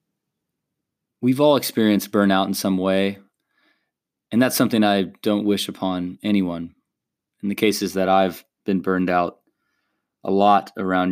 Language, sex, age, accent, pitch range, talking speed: English, male, 30-49, American, 95-110 Hz, 140 wpm